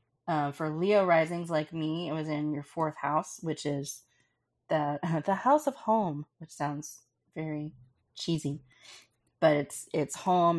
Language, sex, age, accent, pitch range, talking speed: English, female, 30-49, American, 145-165 Hz, 155 wpm